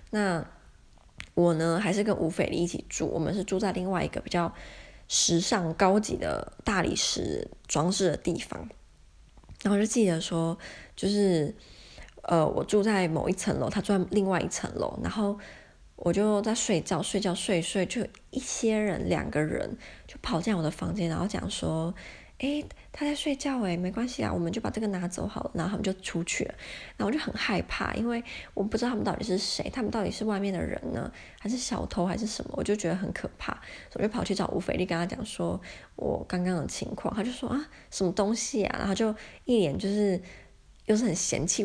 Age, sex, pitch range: 20-39, female, 180-225 Hz